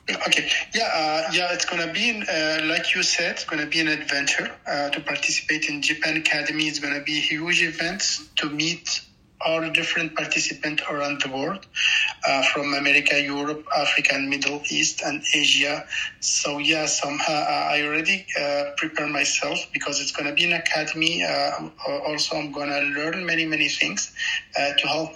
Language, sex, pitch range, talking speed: English, male, 145-165 Hz, 180 wpm